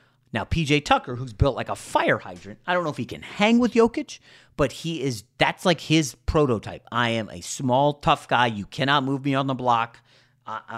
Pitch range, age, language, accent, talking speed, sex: 110-140 Hz, 30-49, English, American, 215 wpm, male